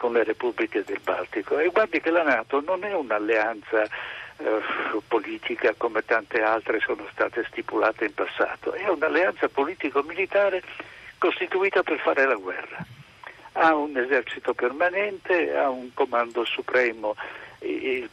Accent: native